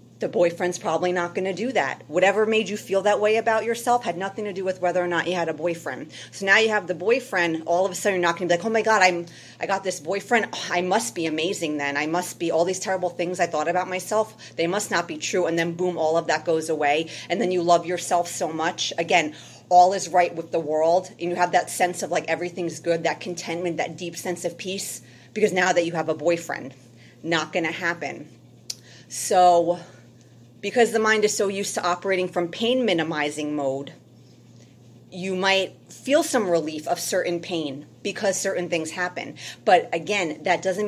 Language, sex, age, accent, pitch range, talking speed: English, female, 30-49, American, 165-190 Hz, 220 wpm